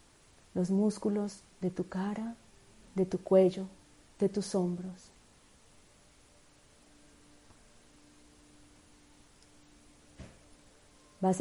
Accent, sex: Colombian, female